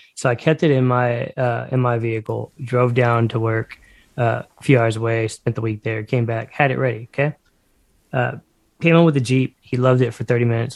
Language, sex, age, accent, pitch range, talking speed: English, male, 20-39, American, 120-140 Hz, 230 wpm